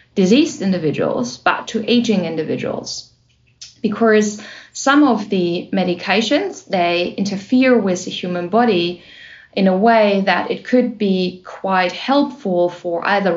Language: English